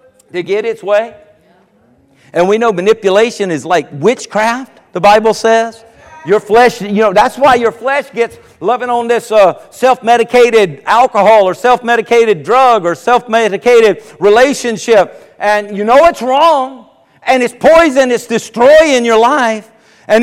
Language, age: English, 50-69